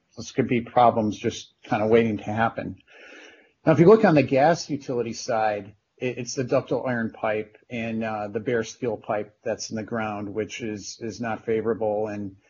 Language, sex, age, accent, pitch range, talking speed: English, male, 40-59, American, 110-135 Hz, 190 wpm